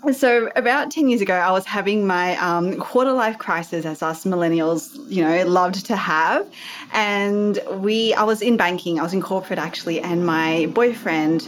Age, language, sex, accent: 20-39, English, female, Australian